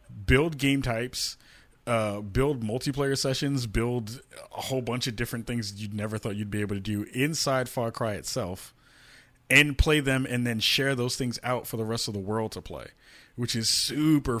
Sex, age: male, 20-39